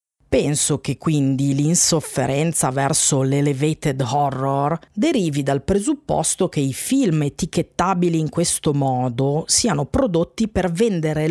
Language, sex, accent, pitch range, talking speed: Italian, female, native, 135-180 Hz, 110 wpm